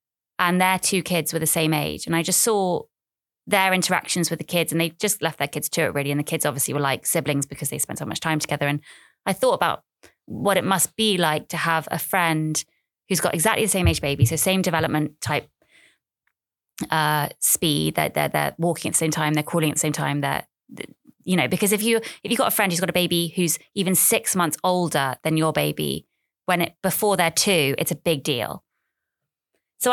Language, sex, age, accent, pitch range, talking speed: English, female, 20-39, British, 160-200 Hz, 225 wpm